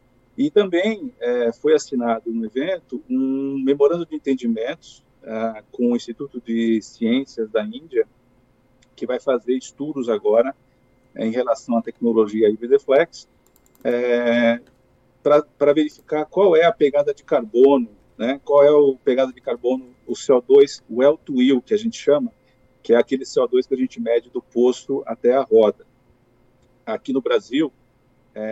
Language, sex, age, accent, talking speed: Portuguese, male, 50-69, Brazilian, 150 wpm